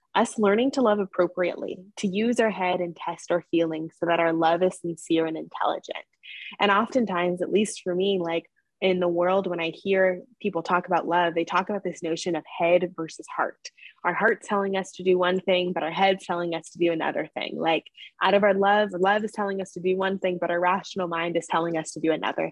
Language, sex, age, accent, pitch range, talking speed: English, female, 10-29, American, 170-195 Hz, 230 wpm